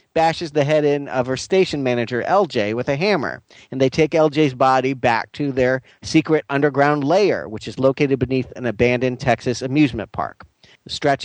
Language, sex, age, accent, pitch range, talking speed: English, male, 40-59, American, 130-165 Hz, 175 wpm